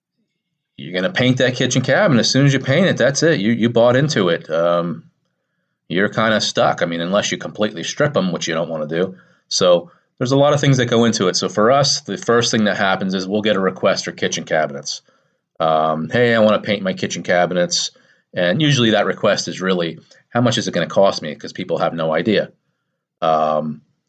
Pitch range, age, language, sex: 85-115 Hz, 30-49, English, male